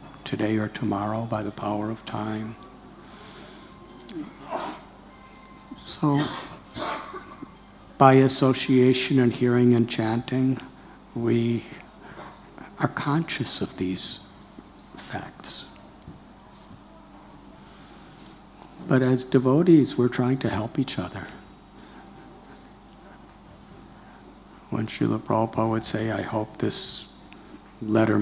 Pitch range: 110-135 Hz